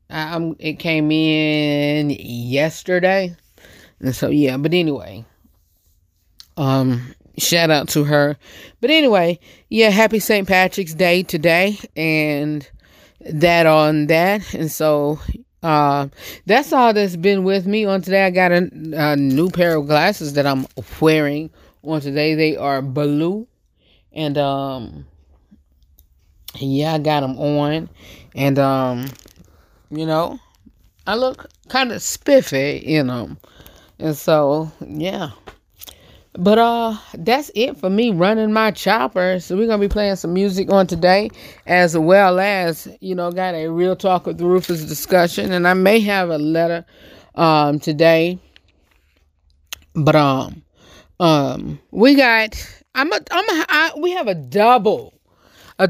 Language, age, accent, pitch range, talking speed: English, 20-39, American, 145-190 Hz, 140 wpm